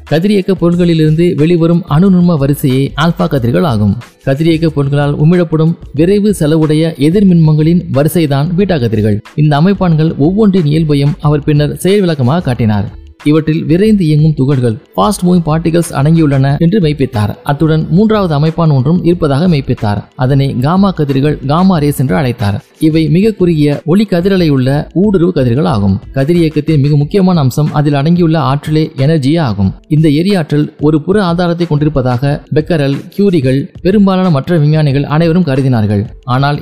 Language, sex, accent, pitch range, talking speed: Tamil, male, native, 140-175 Hz, 125 wpm